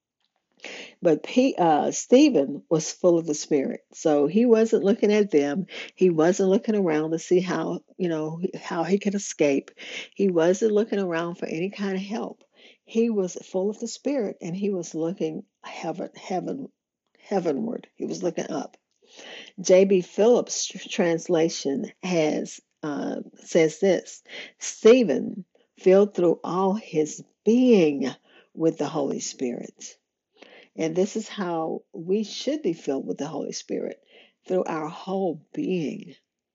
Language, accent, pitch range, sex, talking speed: English, American, 165-225 Hz, female, 145 wpm